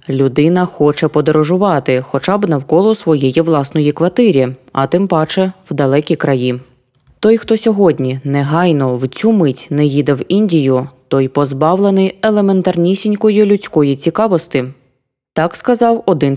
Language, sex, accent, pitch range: Ukrainian, female, native, 145-205 Hz